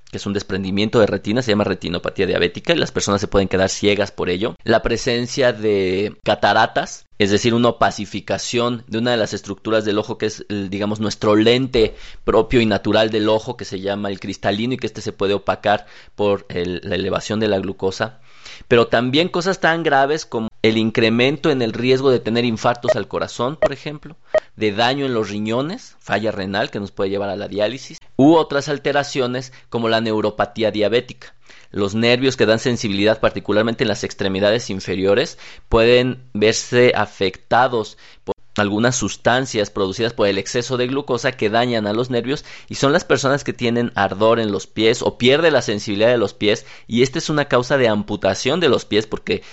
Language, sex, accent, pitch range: Spanish, male, Mexican, 105-125 Hz